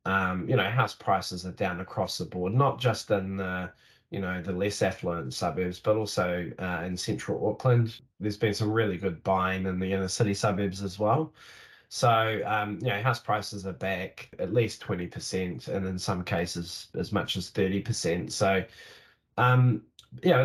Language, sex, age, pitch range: English, male, 20-39, 100-120 Hz